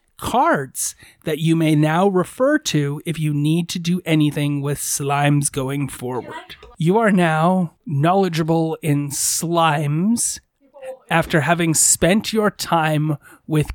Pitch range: 145-175 Hz